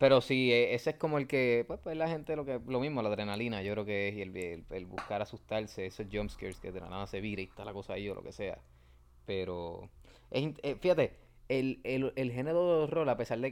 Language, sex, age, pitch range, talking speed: Spanish, male, 20-39, 100-135 Hz, 260 wpm